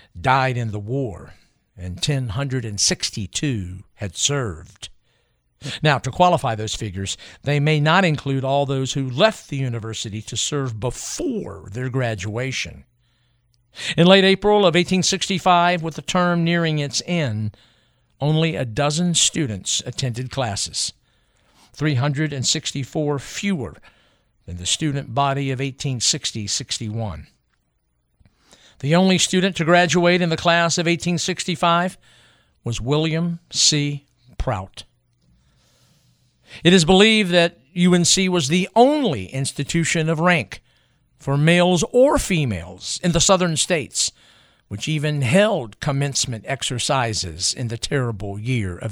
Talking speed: 120 wpm